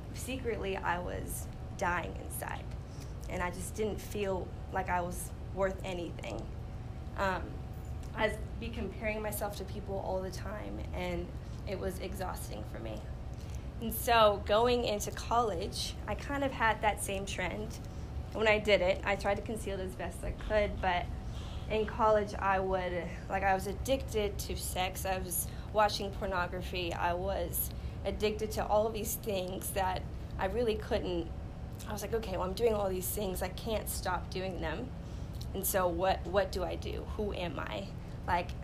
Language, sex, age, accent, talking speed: English, female, 10-29, American, 170 wpm